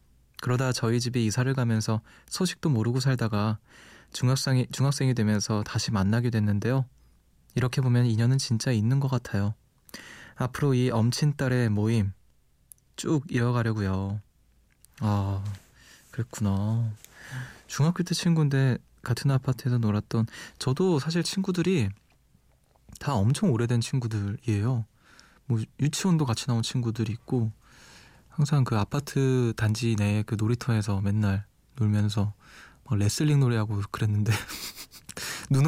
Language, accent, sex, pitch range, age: Korean, native, male, 110-135 Hz, 20-39